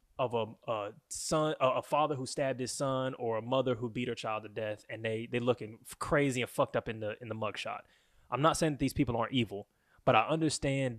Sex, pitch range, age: male, 110-140 Hz, 20-39